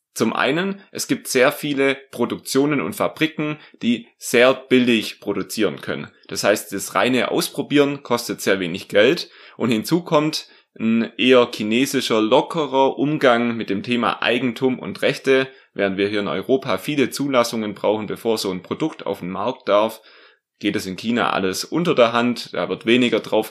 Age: 20-39